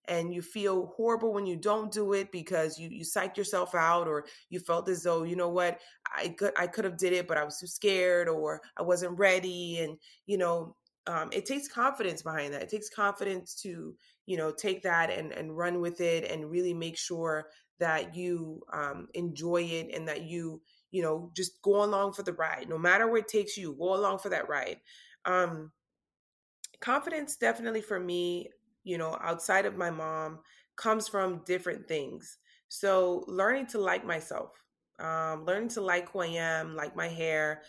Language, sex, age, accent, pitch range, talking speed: English, female, 20-39, American, 160-195 Hz, 195 wpm